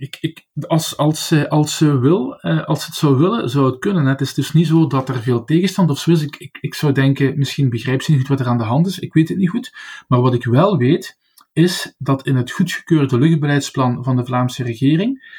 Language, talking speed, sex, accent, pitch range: Dutch, 235 wpm, male, Dutch, 125-165 Hz